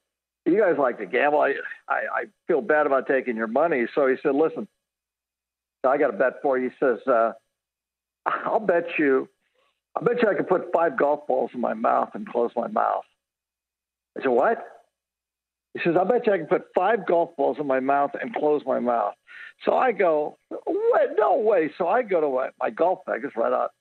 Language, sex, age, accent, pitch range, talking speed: English, male, 60-79, American, 115-170 Hz, 210 wpm